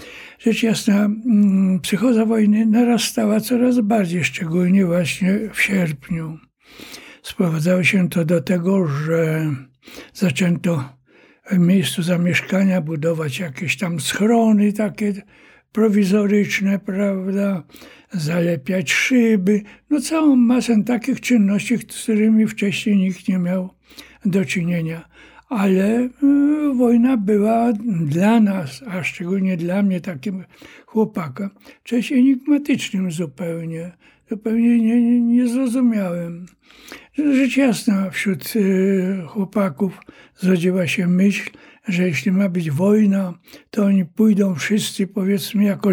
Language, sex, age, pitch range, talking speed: Polish, male, 60-79, 180-225 Hz, 105 wpm